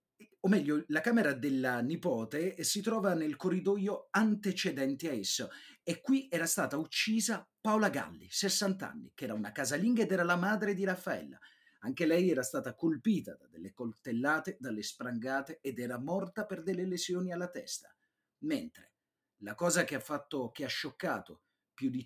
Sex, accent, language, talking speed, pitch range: male, native, Italian, 165 wpm, 125-200 Hz